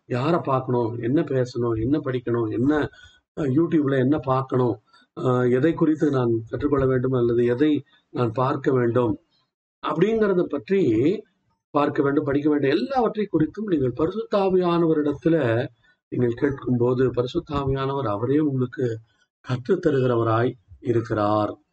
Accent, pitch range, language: native, 125-175 Hz, Tamil